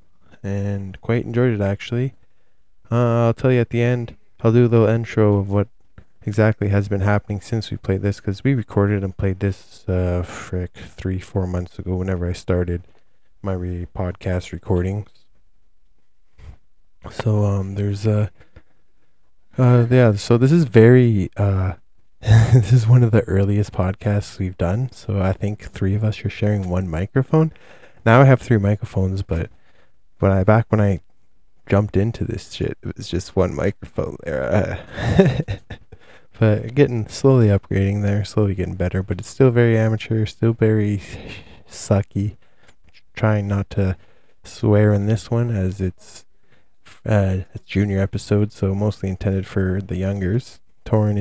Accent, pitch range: American, 95-110 Hz